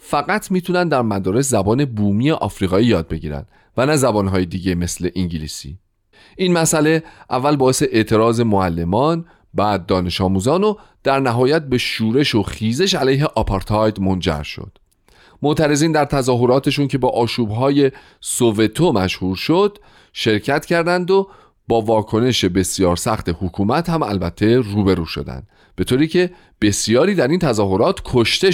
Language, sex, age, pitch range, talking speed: Persian, male, 40-59, 95-145 Hz, 135 wpm